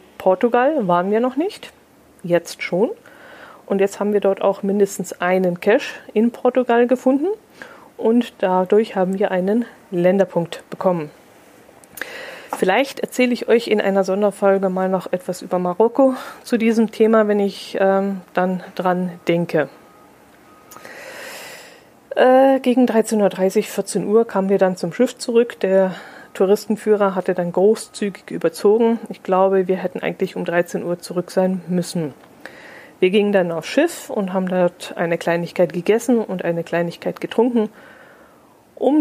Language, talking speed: German, 140 wpm